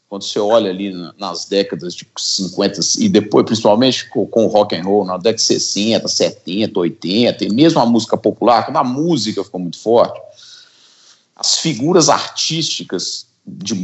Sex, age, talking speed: male, 50-69, 160 wpm